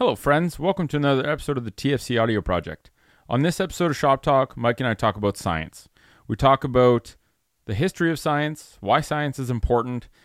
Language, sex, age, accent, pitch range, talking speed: English, male, 30-49, American, 110-145 Hz, 200 wpm